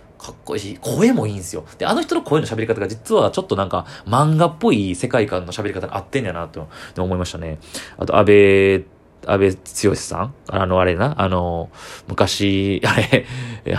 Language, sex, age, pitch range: Japanese, male, 20-39, 90-125 Hz